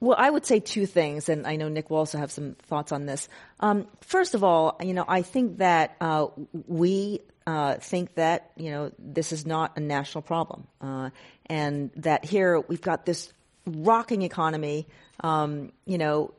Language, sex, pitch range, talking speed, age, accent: English, female, 150-205 Hz, 185 wpm, 40-59, American